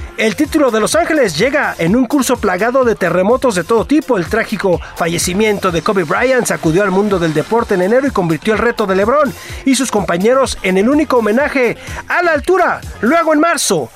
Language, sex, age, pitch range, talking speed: Spanish, male, 40-59, 195-280 Hz, 200 wpm